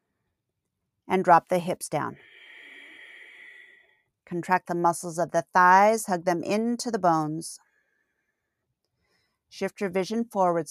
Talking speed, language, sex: 110 wpm, English, female